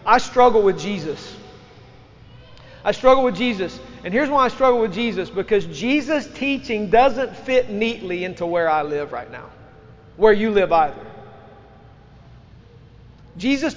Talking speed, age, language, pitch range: 140 wpm, 40-59, English, 190-245 Hz